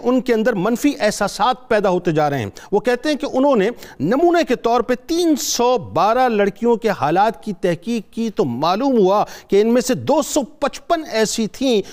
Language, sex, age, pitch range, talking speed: Urdu, male, 50-69, 205-260 Hz, 205 wpm